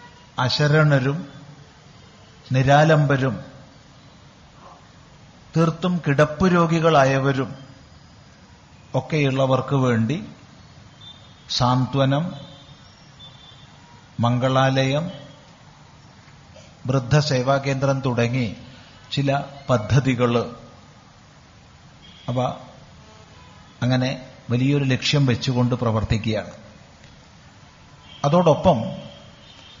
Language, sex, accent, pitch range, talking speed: Malayalam, male, native, 130-155 Hz, 40 wpm